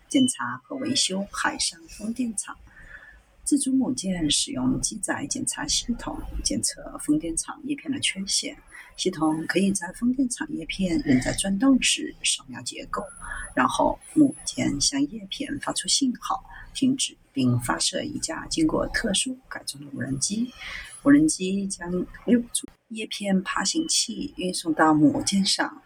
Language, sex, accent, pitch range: Chinese, female, native, 195-290 Hz